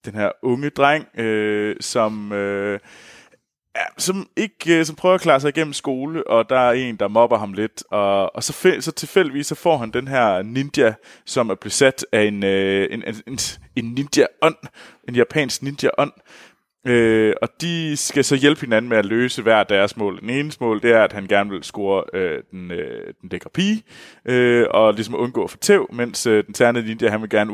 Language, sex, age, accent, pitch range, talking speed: Danish, male, 20-39, native, 100-135 Hz, 200 wpm